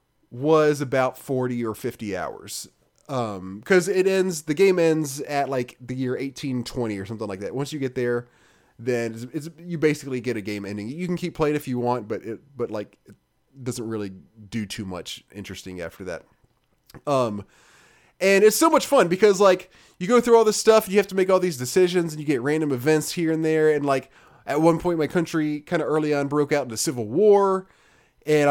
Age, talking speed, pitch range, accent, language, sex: 20-39, 215 wpm, 130-175 Hz, American, English, male